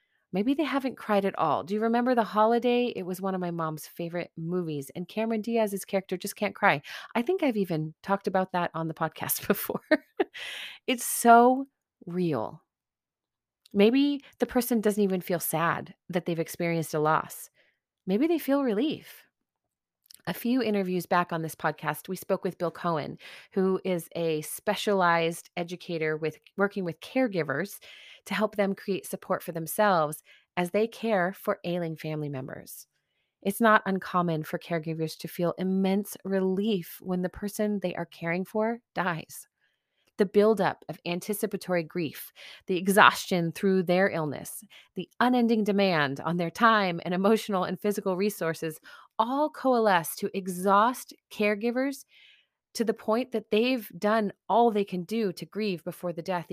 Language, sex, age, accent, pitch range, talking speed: English, female, 30-49, American, 170-215 Hz, 160 wpm